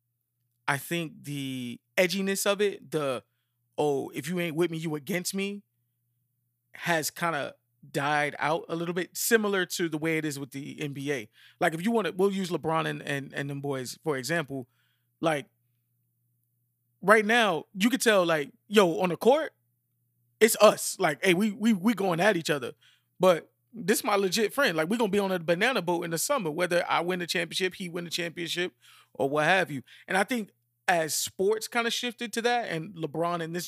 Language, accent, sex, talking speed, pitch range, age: English, American, male, 205 wpm, 140-195 Hz, 20-39